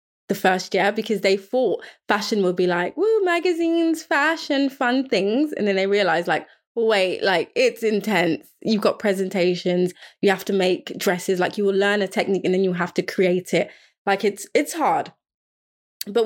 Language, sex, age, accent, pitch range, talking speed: English, female, 20-39, British, 185-220 Hz, 185 wpm